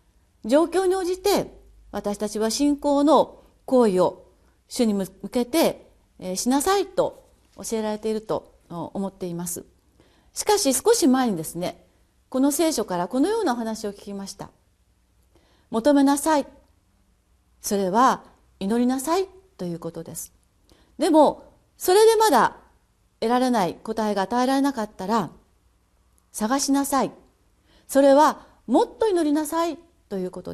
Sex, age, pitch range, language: female, 40-59, 200-300 Hz, Japanese